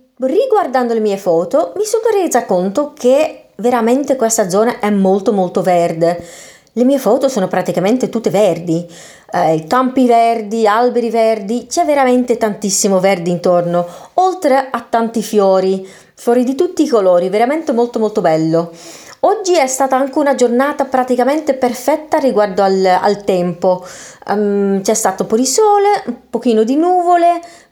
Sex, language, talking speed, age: female, Italian, 145 wpm, 30-49